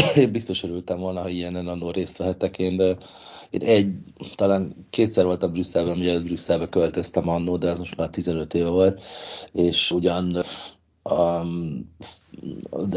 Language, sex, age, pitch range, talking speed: Hungarian, male, 30-49, 90-100 Hz, 155 wpm